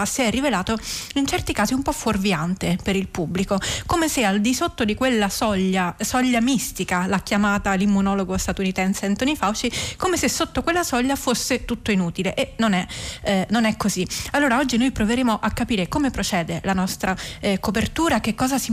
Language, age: Italian, 30-49